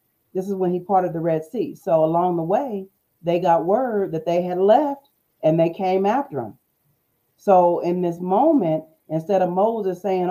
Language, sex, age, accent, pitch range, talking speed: English, female, 40-59, American, 160-210 Hz, 185 wpm